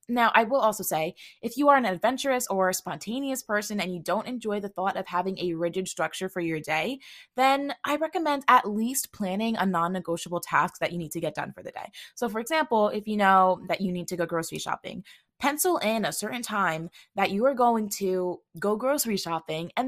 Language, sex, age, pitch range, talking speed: English, female, 20-39, 170-230 Hz, 215 wpm